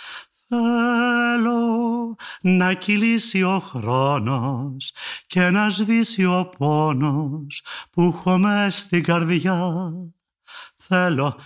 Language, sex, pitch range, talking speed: Greek, male, 140-195 Hz, 80 wpm